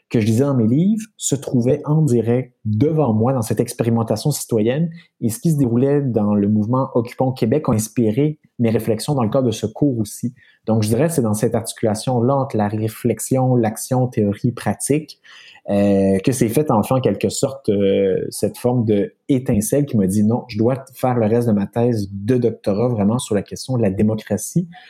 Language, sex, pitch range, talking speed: French, male, 105-130 Hz, 200 wpm